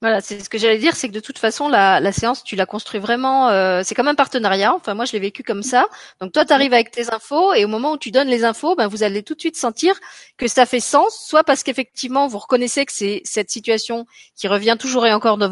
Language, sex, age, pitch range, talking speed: French, female, 30-49, 200-270 Hz, 275 wpm